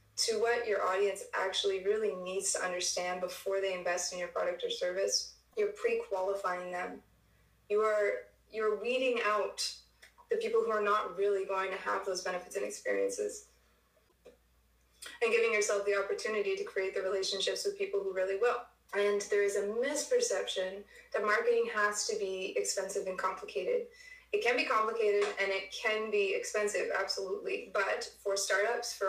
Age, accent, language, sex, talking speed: 20-39, American, English, female, 165 wpm